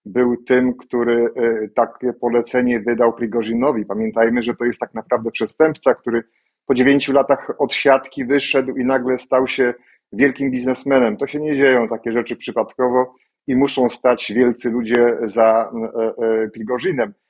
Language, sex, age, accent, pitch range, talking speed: Polish, male, 40-59, native, 120-140 Hz, 140 wpm